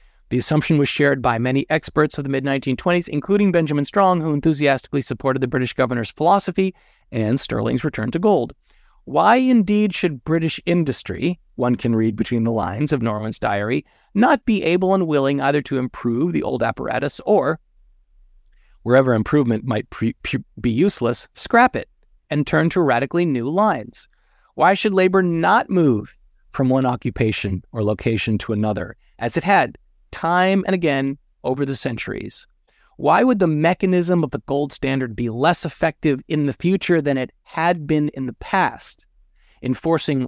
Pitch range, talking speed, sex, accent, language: 130-175 Hz, 160 wpm, male, American, English